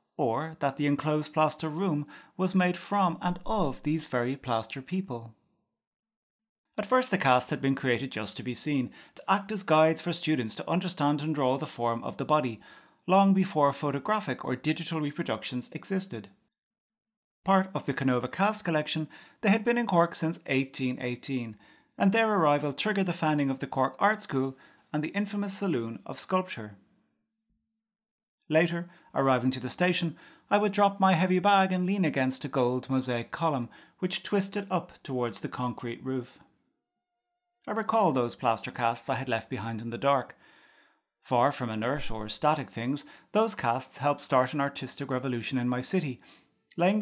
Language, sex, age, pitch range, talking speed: English, male, 30-49, 130-195 Hz, 170 wpm